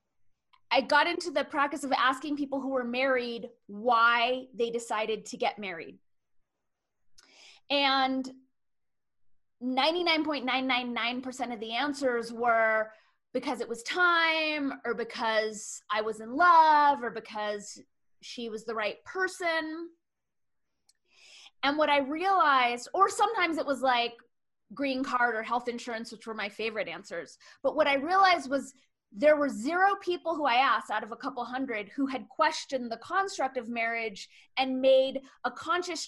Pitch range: 235-295 Hz